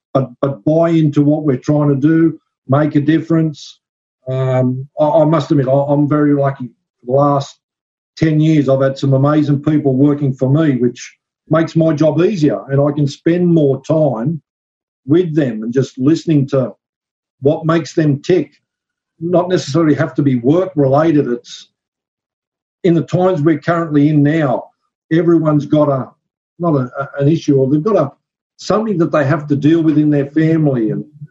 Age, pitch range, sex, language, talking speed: 50-69, 135-160 Hz, male, English, 170 wpm